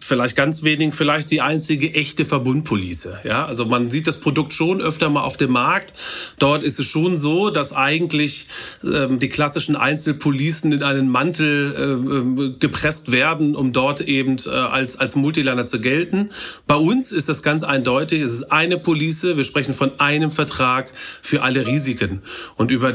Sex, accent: male, German